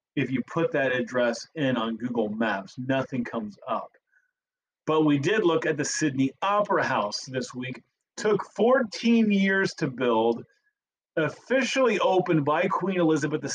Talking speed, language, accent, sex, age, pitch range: 155 wpm, English, American, male, 30-49, 130-190 Hz